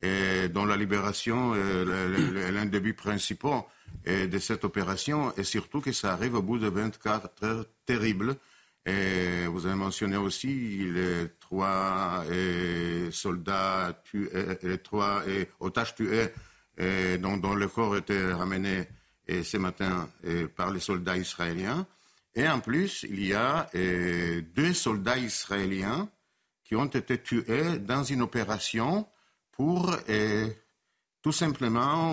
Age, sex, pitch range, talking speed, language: 60-79, male, 95-115 Hz, 120 wpm, French